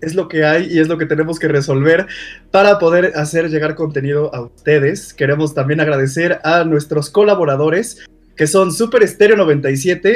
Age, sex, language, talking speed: 20-39, male, Spanish, 170 wpm